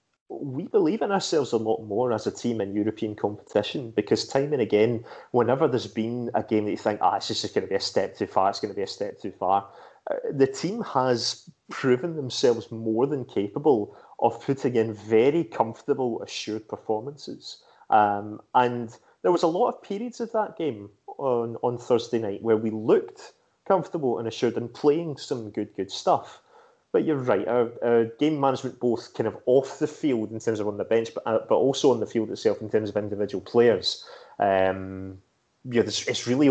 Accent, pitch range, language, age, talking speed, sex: British, 110-135 Hz, English, 30-49, 200 wpm, male